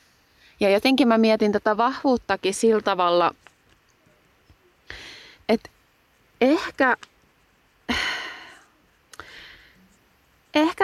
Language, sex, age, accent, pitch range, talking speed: Finnish, female, 30-49, native, 170-225 Hz, 55 wpm